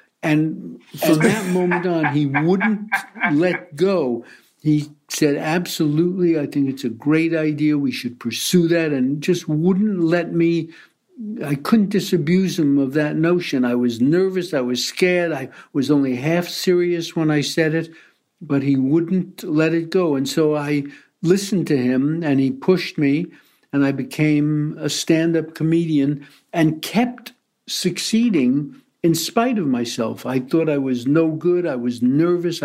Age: 60-79